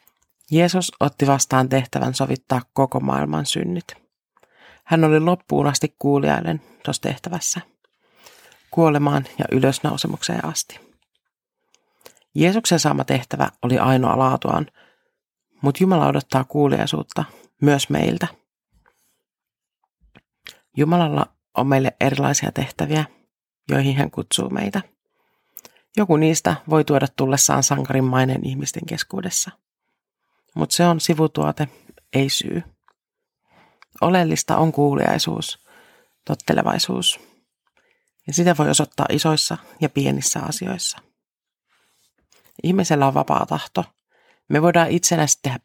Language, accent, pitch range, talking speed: Finnish, native, 135-170 Hz, 95 wpm